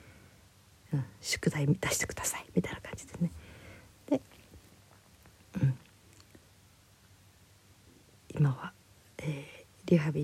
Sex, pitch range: female, 110-185 Hz